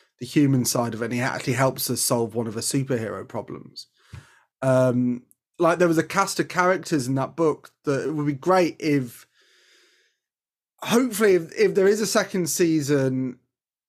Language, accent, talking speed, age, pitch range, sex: English, British, 175 wpm, 30-49, 130-160 Hz, male